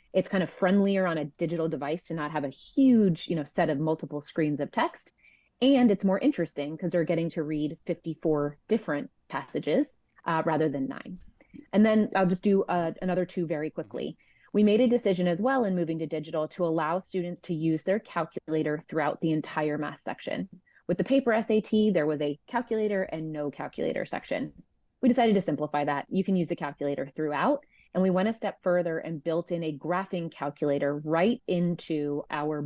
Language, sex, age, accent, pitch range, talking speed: English, female, 30-49, American, 155-190 Hz, 190 wpm